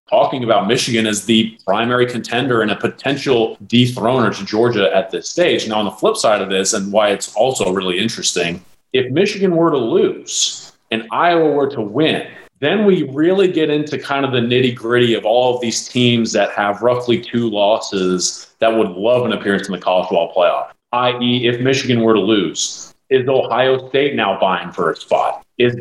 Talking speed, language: 195 wpm, English